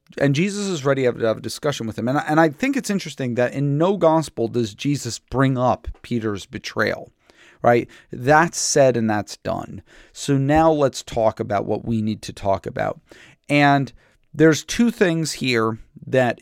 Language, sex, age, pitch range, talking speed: English, male, 40-59, 115-155 Hz, 175 wpm